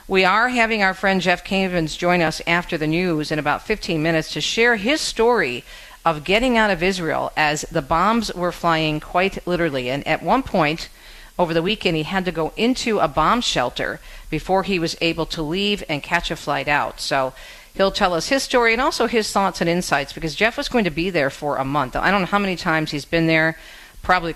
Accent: American